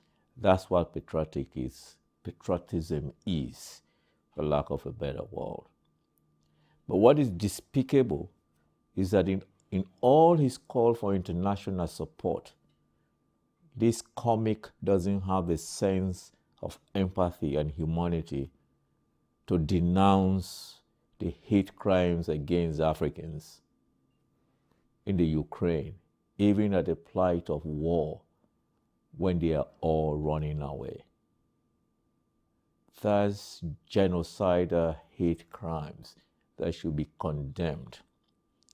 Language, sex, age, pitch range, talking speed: English, male, 50-69, 80-95 Hz, 100 wpm